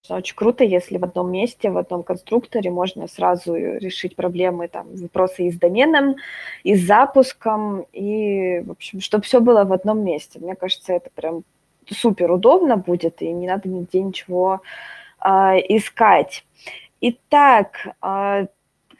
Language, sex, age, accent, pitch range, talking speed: Russian, female, 20-39, native, 180-235 Hz, 145 wpm